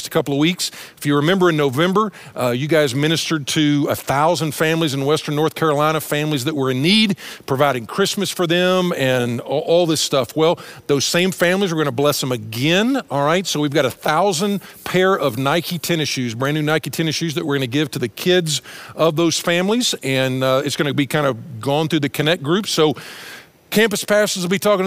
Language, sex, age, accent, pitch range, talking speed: English, male, 50-69, American, 140-175 Hz, 220 wpm